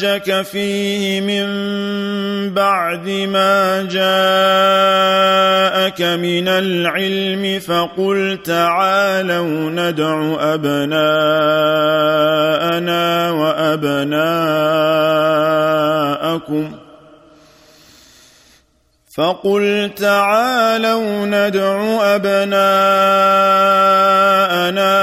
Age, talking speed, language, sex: 40-59, 45 wpm, Arabic, male